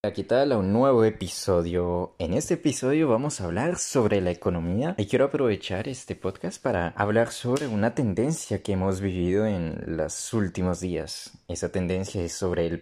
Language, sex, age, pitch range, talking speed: Spanish, male, 20-39, 85-110 Hz, 180 wpm